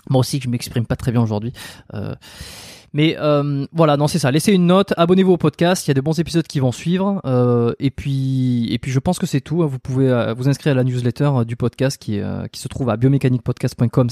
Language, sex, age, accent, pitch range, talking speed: French, male, 20-39, French, 115-140 Hz, 250 wpm